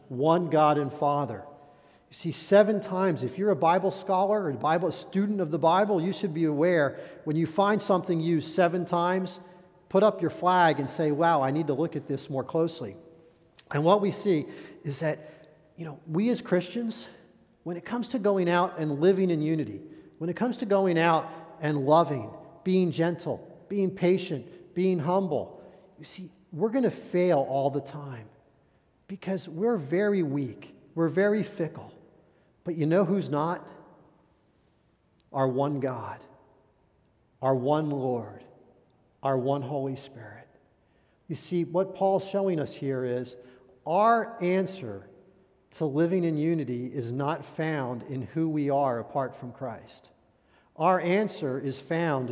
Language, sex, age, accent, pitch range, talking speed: English, male, 40-59, American, 140-180 Hz, 160 wpm